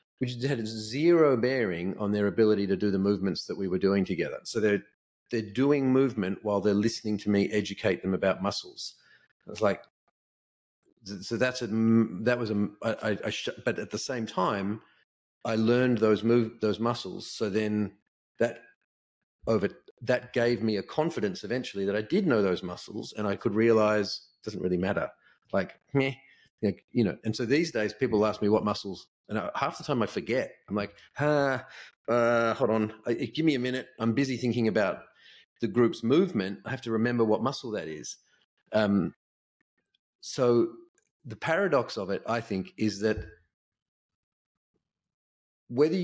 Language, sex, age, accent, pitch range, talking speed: English, male, 40-59, Australian, 105-125 Hz, 170 wpm